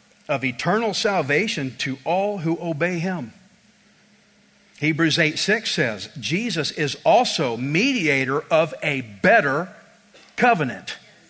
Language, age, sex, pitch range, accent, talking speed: English, 50-69, male, 180-245 Hz, American, 105 wpm